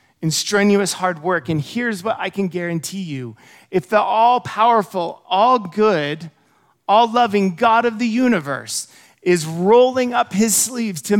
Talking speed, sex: 140 wpm, male